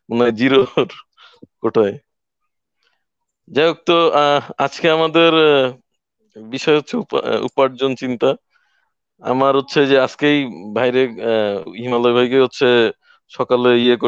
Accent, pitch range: native, 120-165 Hz